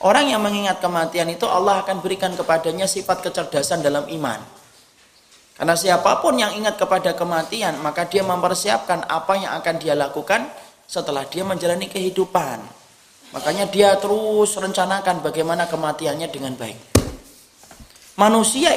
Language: Indonesian